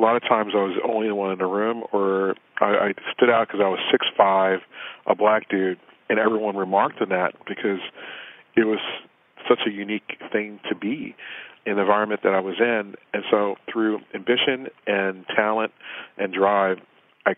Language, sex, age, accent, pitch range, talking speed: English, male, 40-59, American, 95-110 Hz, 185 wpm